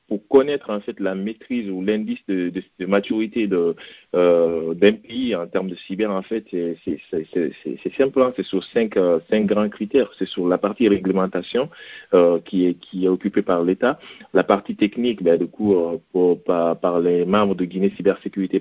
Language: French